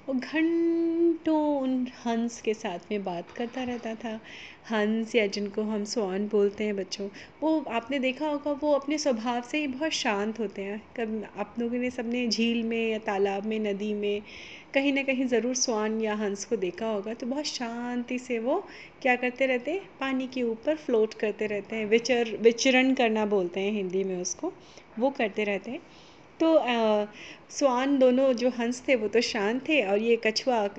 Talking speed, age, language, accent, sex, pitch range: 185 wpm, 30-49, Hindi, native, female, 215-270 Hz